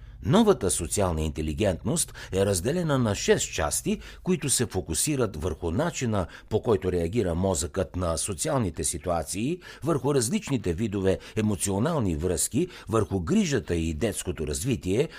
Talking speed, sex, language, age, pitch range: 120 wpm, male, Bulgarian, 60-79, 90-135 Hz